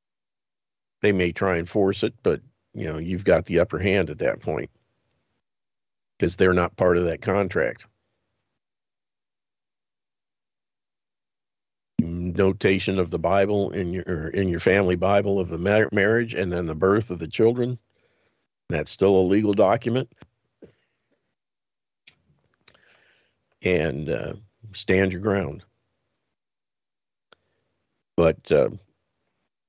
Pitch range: 90-105 Hz